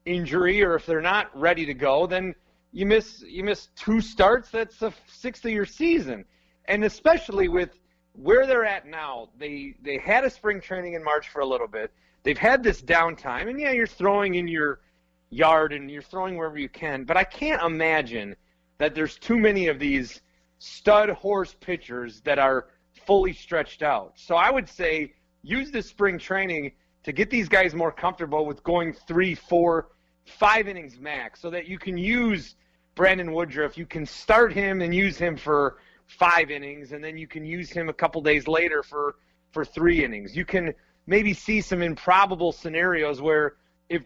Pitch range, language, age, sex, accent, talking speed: 150-200 Hz, English, 30-49, male, American, 185 wpm